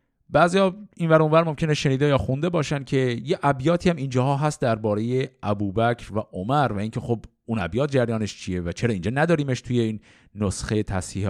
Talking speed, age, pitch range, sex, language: 175 wpm, 50-69, 105-165 Hz, male, Persian